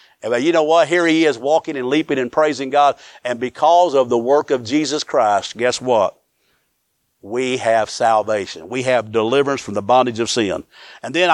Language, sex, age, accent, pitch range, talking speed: English, male, 50-69, American, 130-155 Hz, 185 wpm